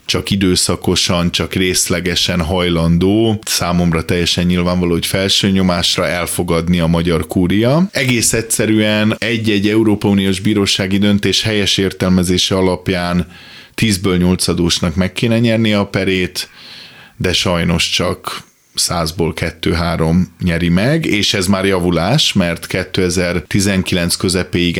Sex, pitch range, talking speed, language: male, 90-105 Hz, 110 wpm, Hungarian